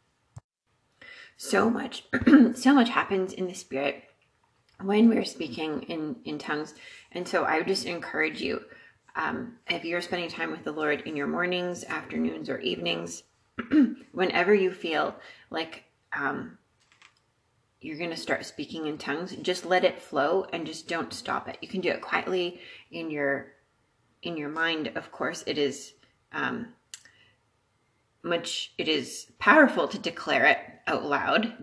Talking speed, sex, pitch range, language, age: 155 wpm, female, 145-210 Hz, English, 30-49